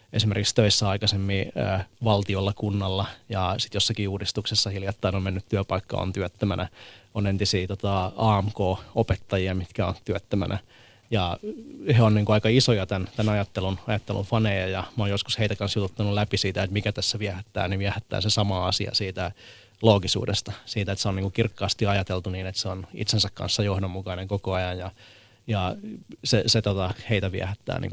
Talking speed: 170 wpm